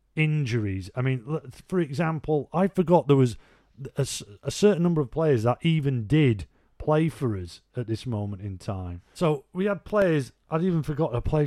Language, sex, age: English, male, 40-59